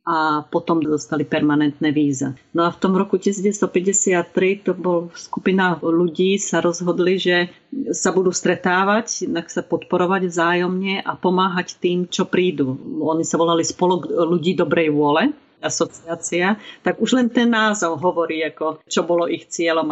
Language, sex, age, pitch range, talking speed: Slovak, female, 40-59, 160-185 Hz, 150 wpm